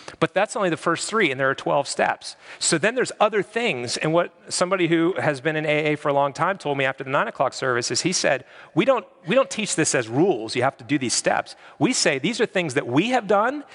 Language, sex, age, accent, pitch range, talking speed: English, male, 40-59, American, 135-180 Hz, 265 wpm